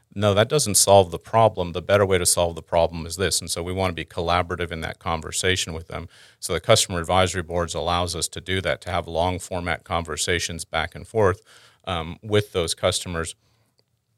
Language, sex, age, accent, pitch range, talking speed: English, male, 40-59, American, 85-100 Hz, 205 wpm